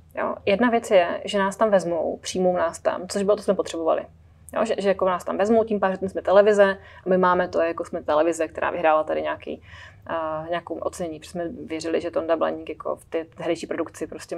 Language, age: Czech, 20-39